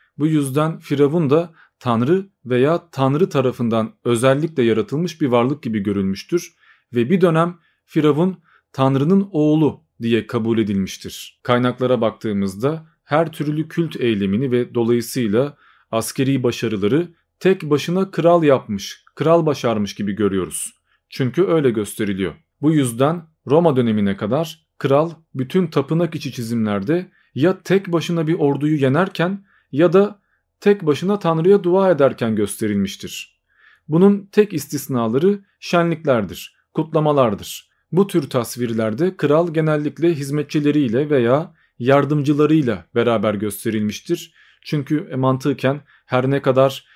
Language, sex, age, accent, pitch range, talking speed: Turkish, male, 40-59, native, 120-165 Hz, 110 wpm